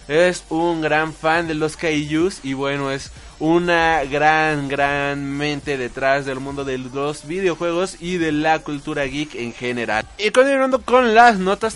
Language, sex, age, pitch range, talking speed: Spanish, male, 20-39, 150-205 Hz, 165 wpm